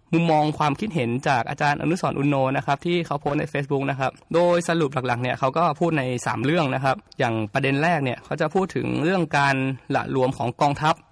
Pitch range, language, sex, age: 140-175 Hz, Thai, male, 20-39